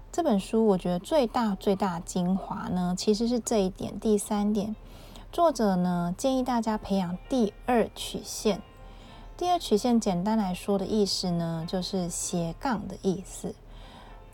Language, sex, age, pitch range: Chinese, female, 20-39, 185-230 Hz